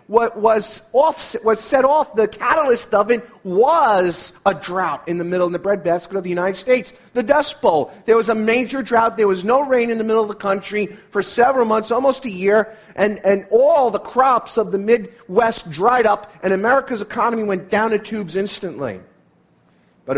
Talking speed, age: 195 wpm, 40-59